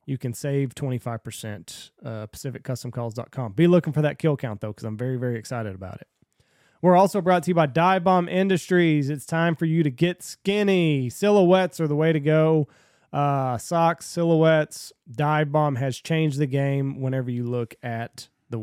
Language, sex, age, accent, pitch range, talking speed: English, male, 30-49, American, 130-160 Hz, 180 wpm